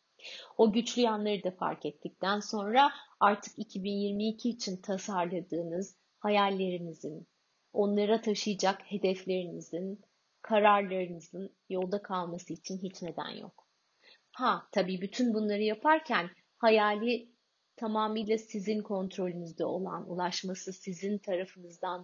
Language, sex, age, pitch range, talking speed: Turkish, female, 30-49, 185-210 Hz, 95 wpm